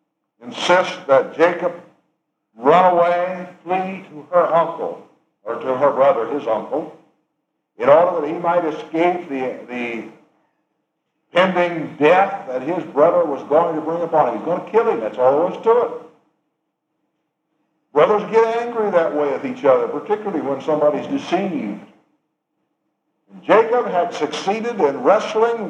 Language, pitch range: English, 145-180 Hz